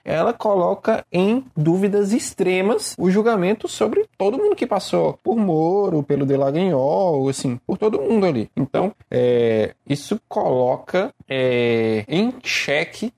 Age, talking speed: 20-39, 130 wpm